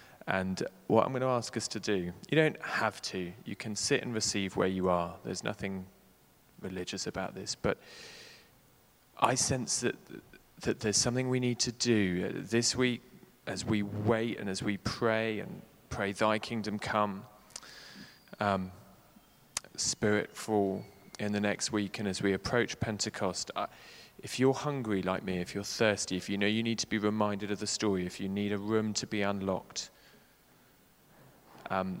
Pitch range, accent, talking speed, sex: 100-115 Hz, British, 170 wpm, male